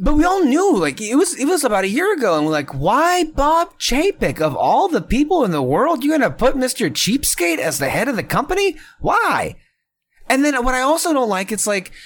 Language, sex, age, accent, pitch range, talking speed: English, male, 30-49, American, 155-255 Hz, 235 wpm